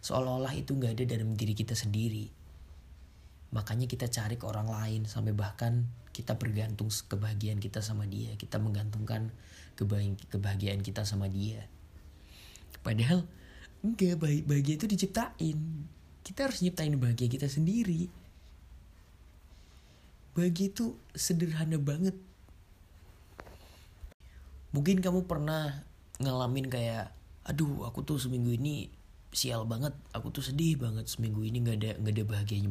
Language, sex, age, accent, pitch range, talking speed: Indonesian, male, 20-39, native, 100-150 Hz, 125 wpm